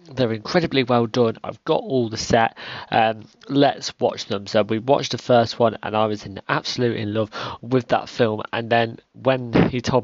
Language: English